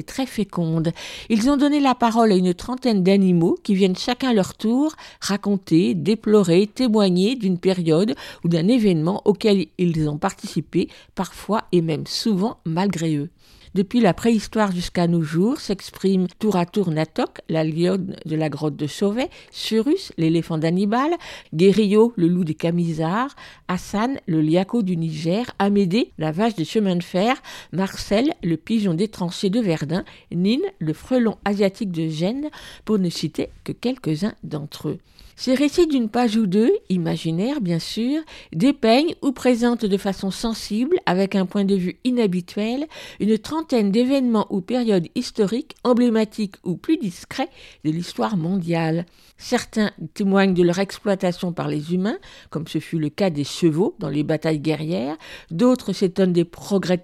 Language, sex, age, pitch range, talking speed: French, female, 50-69, 170-230 Hz, 160 wpm